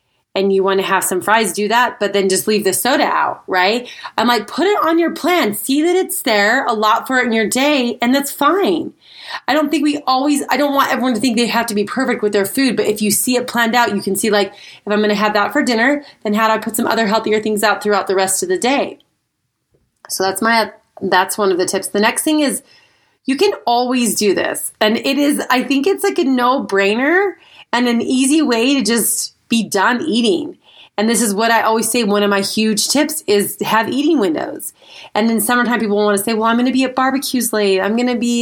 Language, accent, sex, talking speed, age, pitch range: English, American, female, 255 wpm, 30-49, 210-280 Hz